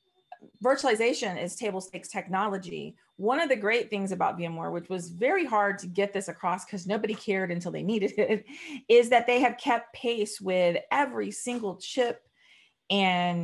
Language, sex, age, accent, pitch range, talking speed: English, female, 30-49, American, 190-235 Hz, 170 wpm